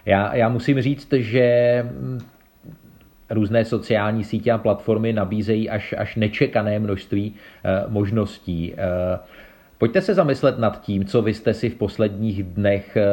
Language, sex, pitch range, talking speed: Czech, male, 95-105 Hz, 130 wpm